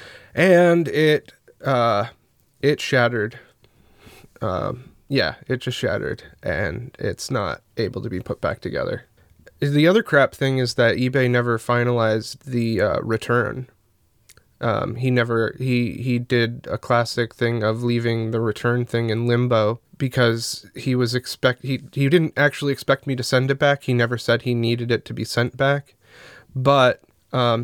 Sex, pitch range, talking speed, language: male, 115-130 Hz, 160 wpm, English